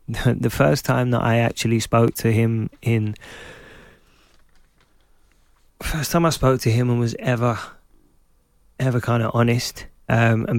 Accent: British